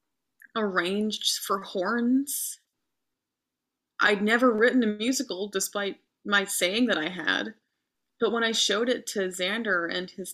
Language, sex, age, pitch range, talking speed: English, female, 20-39, 200-275 Hz, 135 wpm